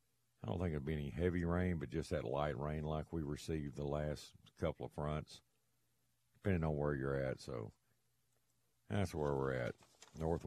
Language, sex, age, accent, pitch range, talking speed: English, male, 50-69, American, 75-90 Hz, 185 wpm